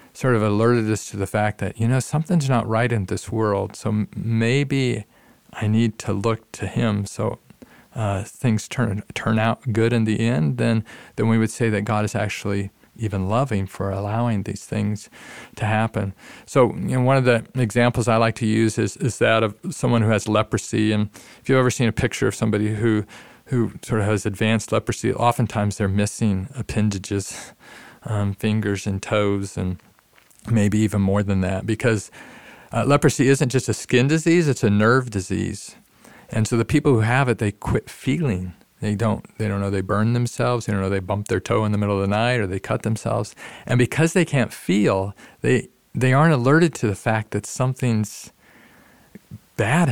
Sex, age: male, 40-59